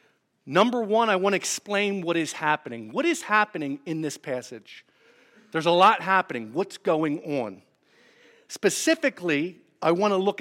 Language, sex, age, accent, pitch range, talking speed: English, male, 50-69, American, 150-205 Hz, 155 wpm